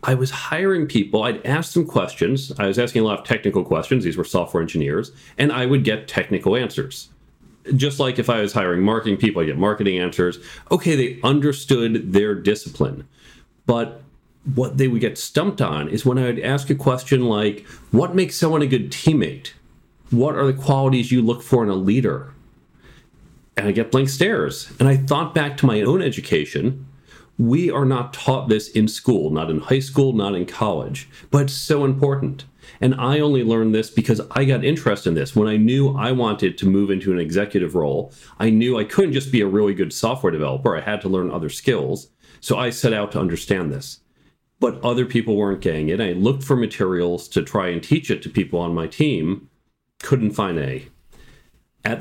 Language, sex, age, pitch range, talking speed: English, male, 40-59, 105-135 Hz, 200 wpm